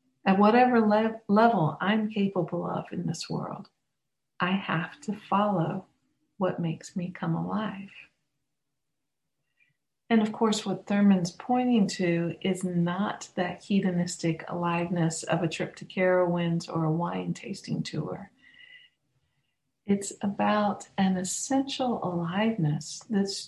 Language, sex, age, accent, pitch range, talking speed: English, female, 50-69, American, 165-200 Hz, 120 wpm